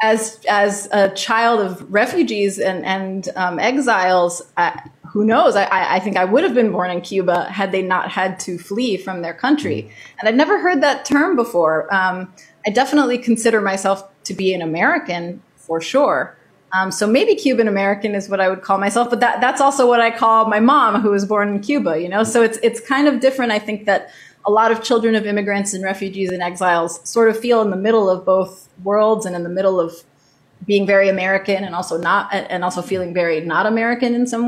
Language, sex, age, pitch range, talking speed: English, female, 20-39, 185-235 Hz, 215 wpm